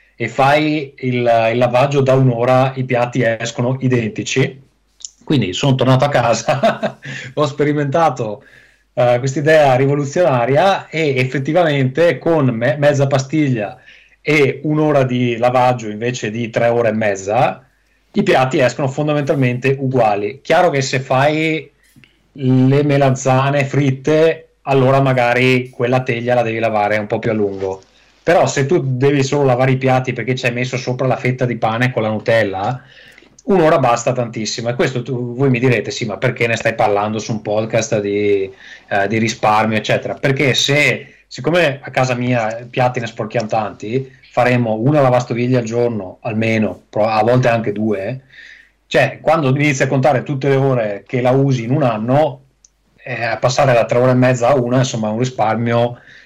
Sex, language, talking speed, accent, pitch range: male, Italian, 160 wpm, native, 120-140 Hz